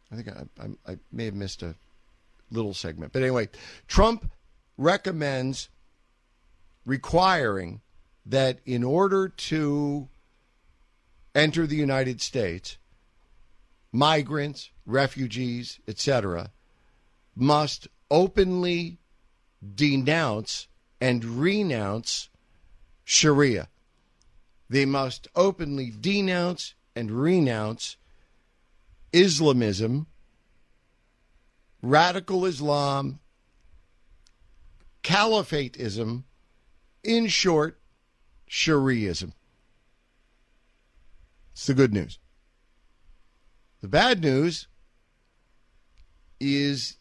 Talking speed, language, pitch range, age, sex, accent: 70 wpm, English, 105-165 Hz, 50-69, male, American